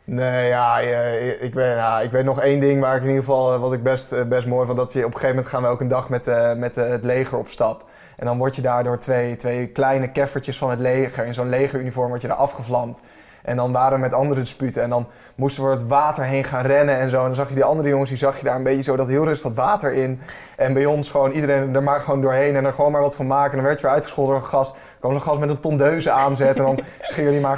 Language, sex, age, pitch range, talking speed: Dutch, male, 20-39, 125-140 Hz, 290 wpm